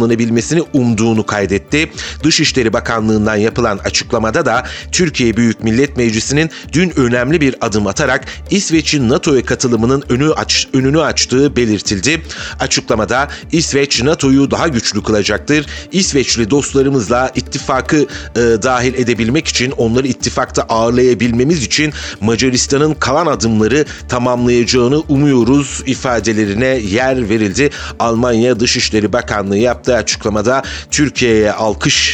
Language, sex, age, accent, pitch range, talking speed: Turkish, male, 40-59, native, 115-140 Hz, 105 wpm